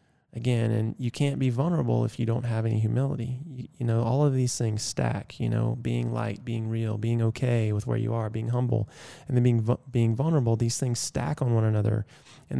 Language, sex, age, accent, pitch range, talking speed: English, male, 20-39, American, 115-135 Hz, 220 wpm